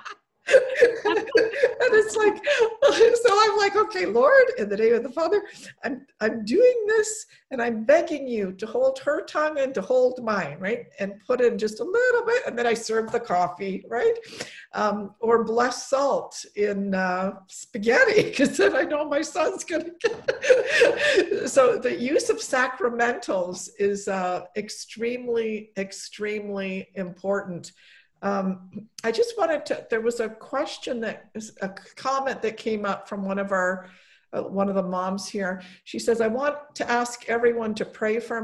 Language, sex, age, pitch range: English, female, 50-69, 195-280 Hz